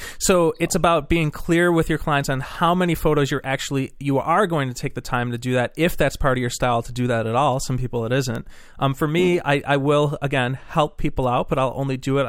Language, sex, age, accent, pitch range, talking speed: English, male, 30-49, American, 125-145 Hz, 265 wpm